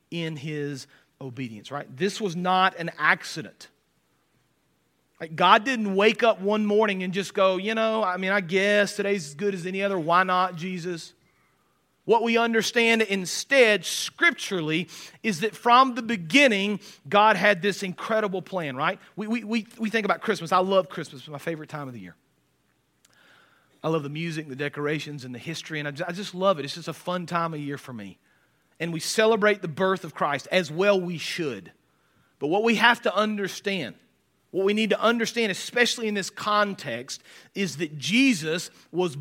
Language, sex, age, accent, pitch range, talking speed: English, male, 40-59, American, 155-210 Hz, 185 wpm